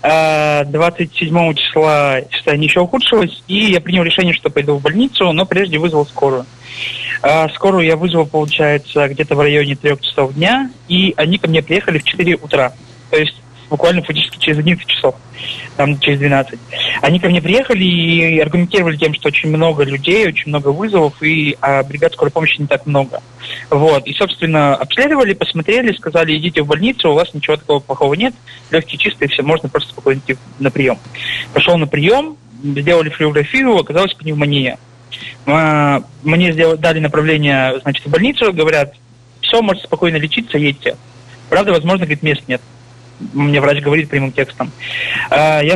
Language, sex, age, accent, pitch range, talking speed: Russian, male, 20-39, native, 140-170 Hz, 160 wpm